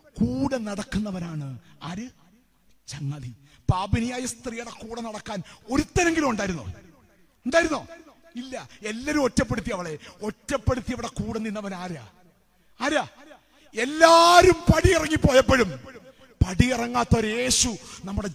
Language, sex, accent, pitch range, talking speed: Malayalam, male, native, 165-245 Hz, 85 wpm